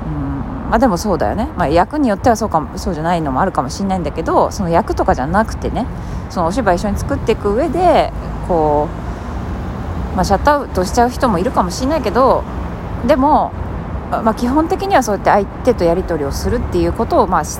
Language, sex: Japanese, female